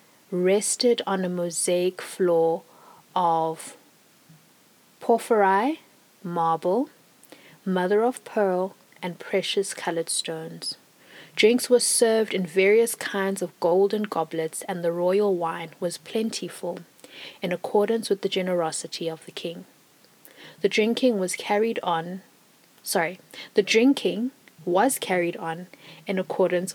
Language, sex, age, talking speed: English, female, 20-39, 115 wpm